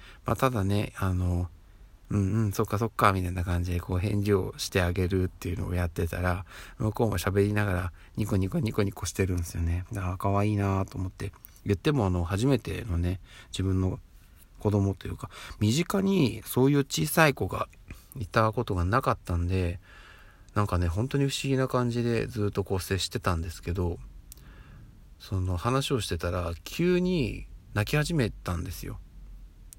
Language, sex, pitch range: Japanese, male, 90-115 Hz